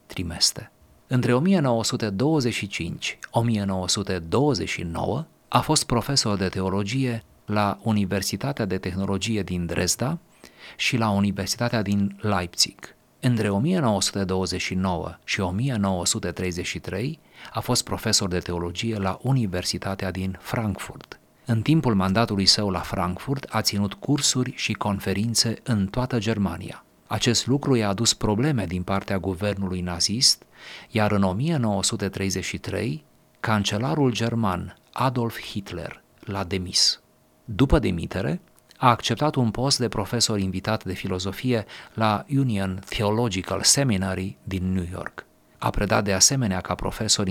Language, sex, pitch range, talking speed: Romanian, male, 95-120 Hz, 110 wpm